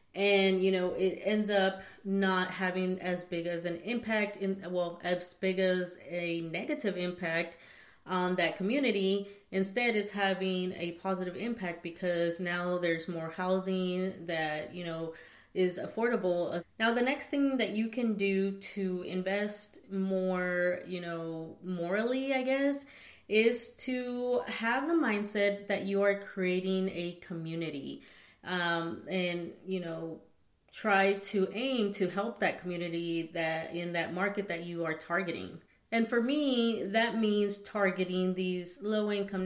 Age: 30-49